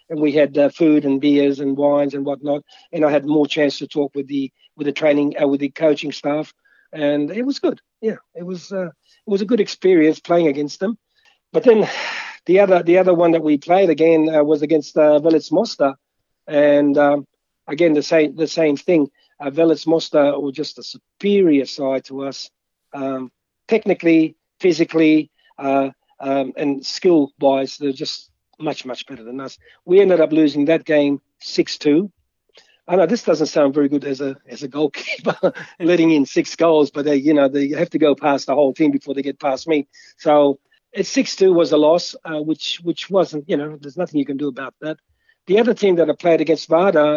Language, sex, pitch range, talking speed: English, male, 145-170 Hz, 205 wpm